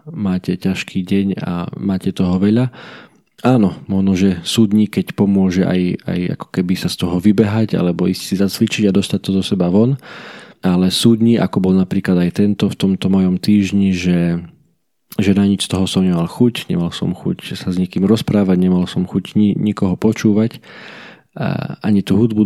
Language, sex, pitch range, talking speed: Slovak, male, 90-105 Hz, 180 wpm